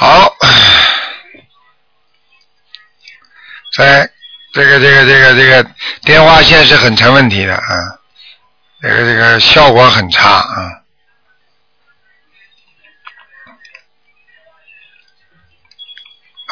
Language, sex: Chinese, male